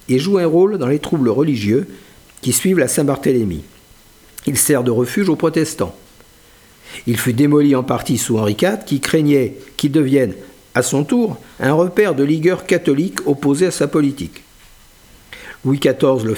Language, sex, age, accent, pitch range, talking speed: French, male, 50-69, French, 120-175 Hz, 165 wpm